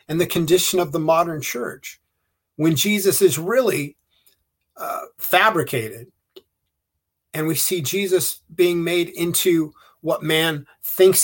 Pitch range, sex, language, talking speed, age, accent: 125-165 Hz, male, English, 125 wpm, 50-69, American